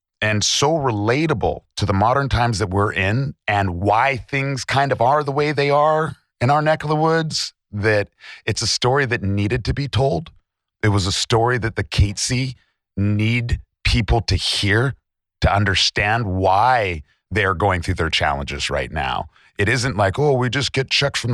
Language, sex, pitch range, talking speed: English, male, 95-130 Hz, 185 wpm